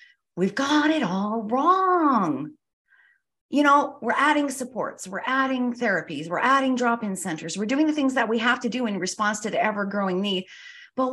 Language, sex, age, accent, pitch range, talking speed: English, female, 40-59, American, 185-260 Hz, 180 wpm